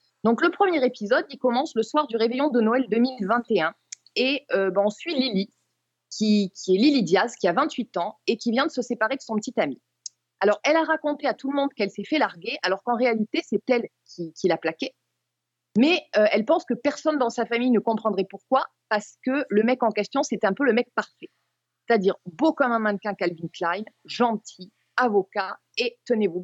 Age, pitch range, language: 30-49, 200-255 Hz, French